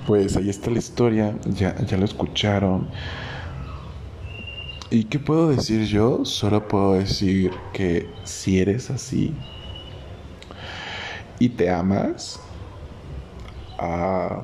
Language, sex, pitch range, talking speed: Spanish, male, 90-125 Hz, 105 wpm